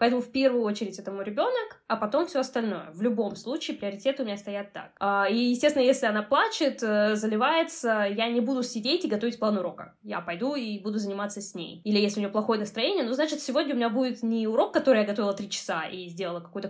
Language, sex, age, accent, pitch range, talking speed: Russian, female, 10-29, native, 210-270 Hz, 225 wpm